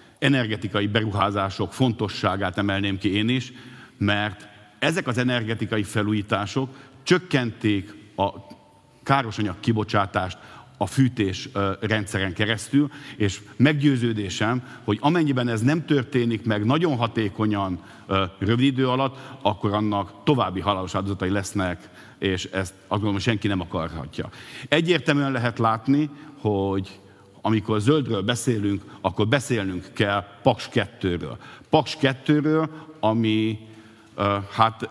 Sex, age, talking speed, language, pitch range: male, 50-69, 105 wpm, Hungarian, 100-130 Hz